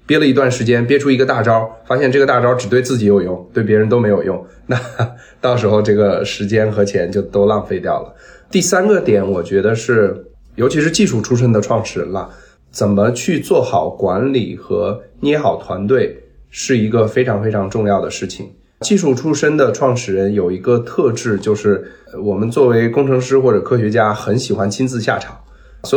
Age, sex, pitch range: 20-39, male, 100-125 Hz